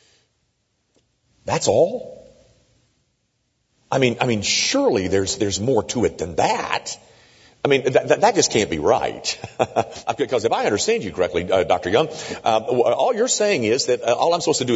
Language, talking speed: English, 180 wpm